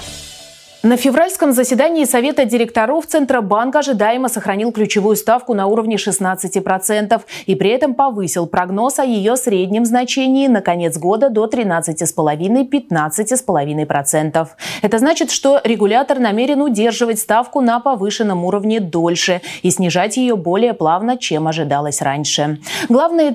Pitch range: 175-255 Hz